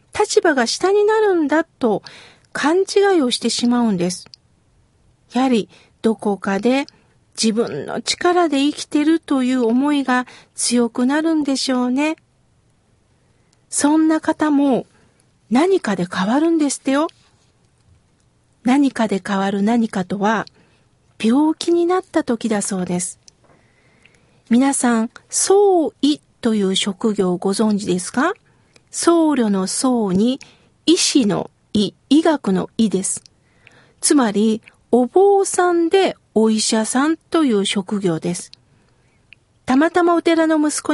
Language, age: Japanese, 50-69